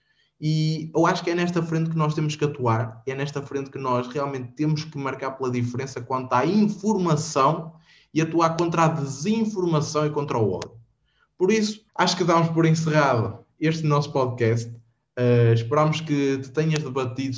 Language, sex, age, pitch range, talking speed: Portuguese, male, 20-39, 125-170 Hz, 175 wpm